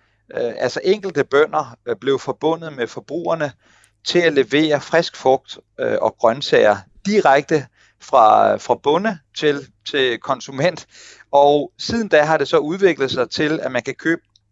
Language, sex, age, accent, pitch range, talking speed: Danish, male, 40-59, native, 135-180 Hz, 135 wpm